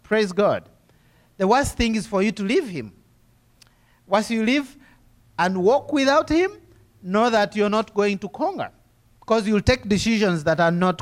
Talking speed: 175 wpm